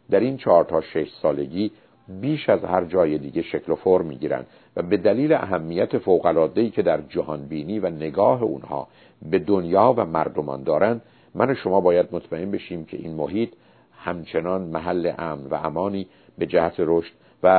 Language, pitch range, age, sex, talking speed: Persian, 85-110 Hz, 50-69, male, 175 wpm